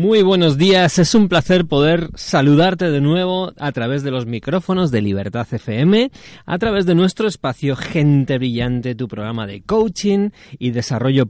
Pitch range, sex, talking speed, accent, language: 125-170 Hz, male, 165 wpm, Spanish, Spanish